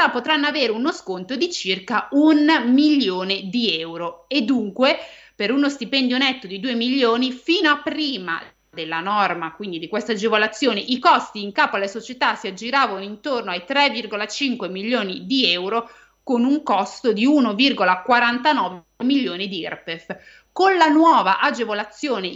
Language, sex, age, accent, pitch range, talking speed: Italian, female, 30-49, native, 205-285 Hz, 145 wpm